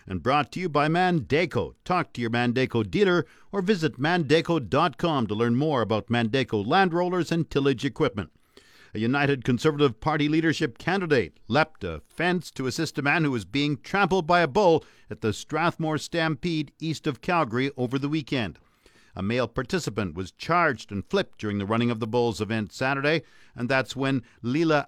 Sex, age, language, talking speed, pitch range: male, 50-69, English, 175 wpm, 120-160 Hz